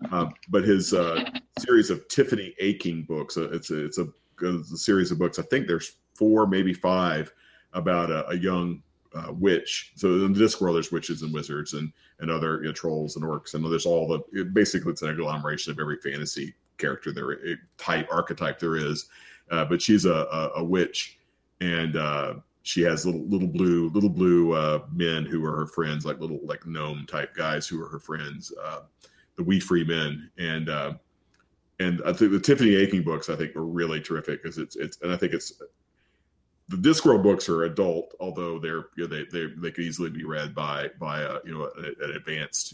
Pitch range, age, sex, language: 80-90 Hz, 40-59, male, English